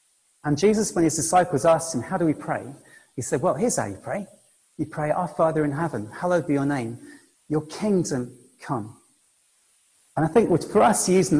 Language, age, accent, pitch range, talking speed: English, 40-59, British, 125-160 Hz, 195 wpm